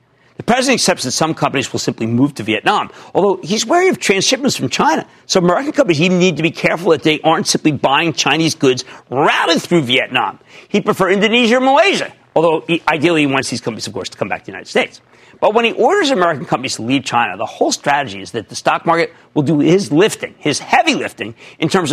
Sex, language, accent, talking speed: male, English, American, 220 wpm